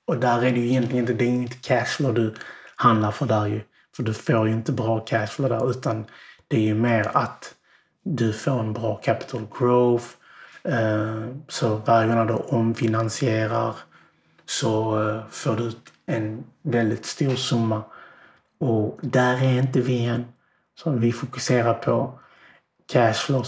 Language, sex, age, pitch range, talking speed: Swedish, male, 30-49, 110-125 Hz, 145 wpm